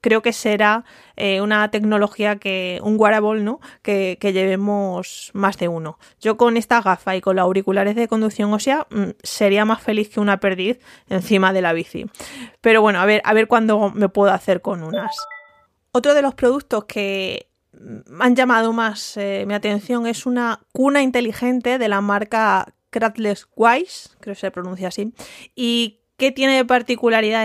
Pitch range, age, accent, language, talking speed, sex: 195-230 Hz, 20-39, Spanish, Spanish, 175 wpm, female